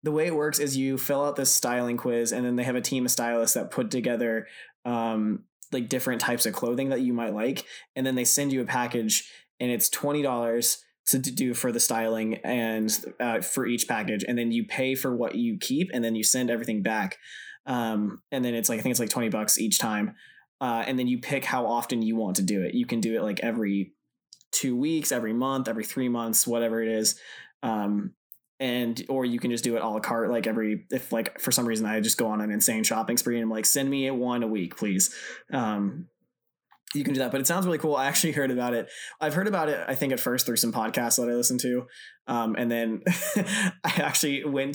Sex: male